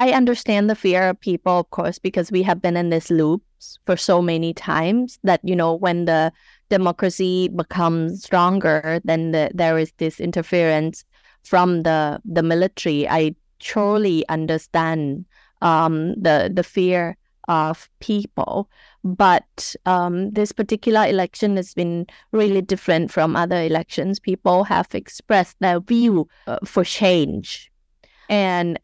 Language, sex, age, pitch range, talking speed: Filipino, female, 20-39, 170-200 Hz, 135 wpm